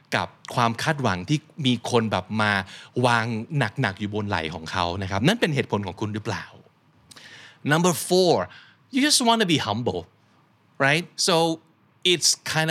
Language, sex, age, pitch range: Thai, male, 20-39, 110-155 Hz